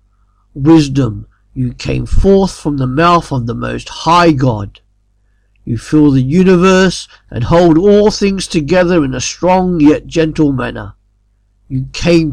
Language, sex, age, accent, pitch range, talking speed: English, male, 50-69, British, 115-170 Hz, 140 wpm